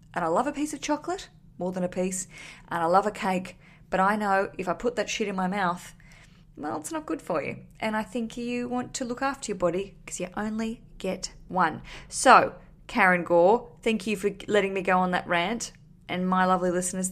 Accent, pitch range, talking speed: Australian, 170-210 Hz, 225 wpm